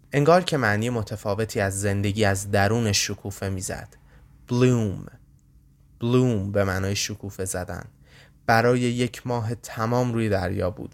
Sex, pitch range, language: male, 100-125 Hz, Persian